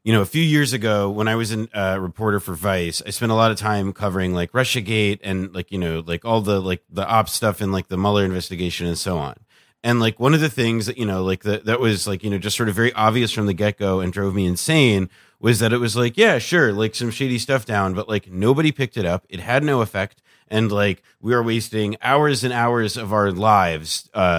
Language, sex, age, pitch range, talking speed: English, male, 30-49, 100-120 Hz, 255 wpm